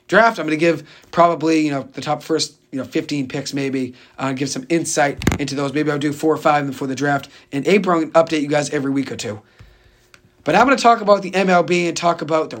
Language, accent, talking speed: English, American, 250 wpm